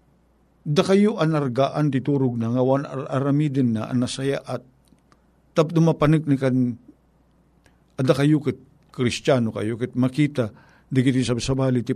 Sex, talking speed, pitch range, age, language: male, 120 wpm, 120-155 Hz, 50-69, Filipino